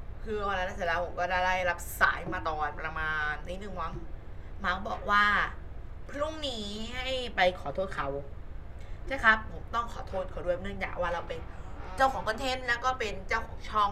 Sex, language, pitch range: female, Thai, 175-240 Hz